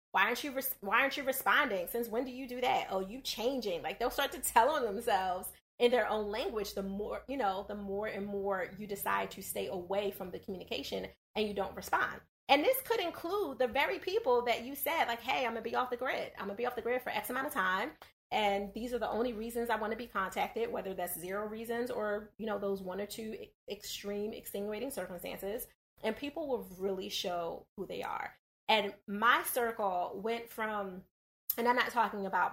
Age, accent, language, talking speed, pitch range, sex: 30-49, American, English, 220 wpm, 195-240 Hz, female